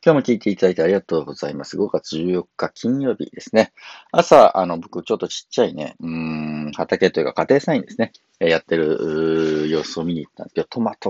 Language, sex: Japanese, male